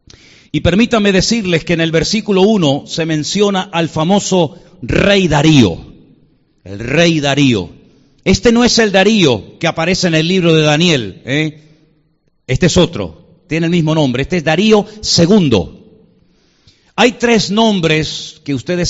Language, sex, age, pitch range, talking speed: Spanish, male, 50-69, 155-210 Hz, 145 wpm